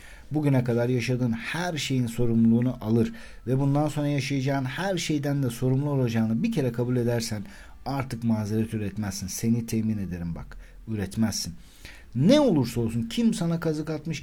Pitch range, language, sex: 105-140 Hz, Turkish, male